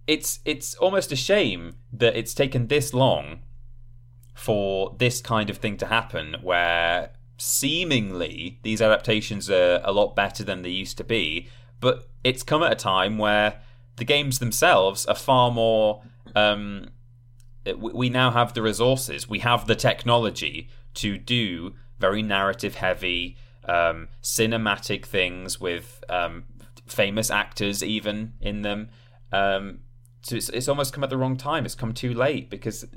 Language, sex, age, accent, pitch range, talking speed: English, male, 30-49, British, 100-120 Hz, 150 wpm